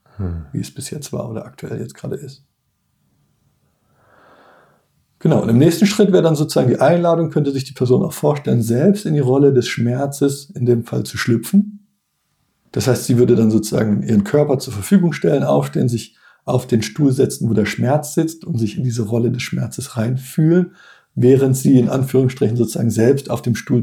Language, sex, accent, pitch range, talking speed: German, male, German, 115-150 Hz, 190 wpm